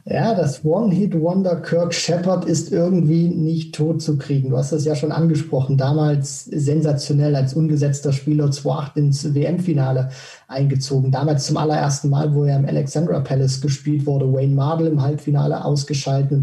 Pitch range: 135-160 Hz